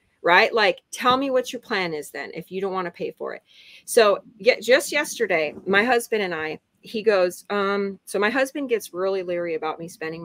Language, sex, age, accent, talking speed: English, female, 30-49, American, 210 wpm